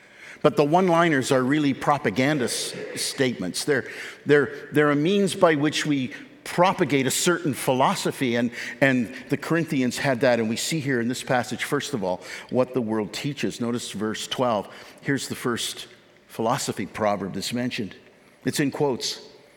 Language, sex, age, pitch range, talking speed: English, male, 50-69, 125-190 Hz, 160 wpm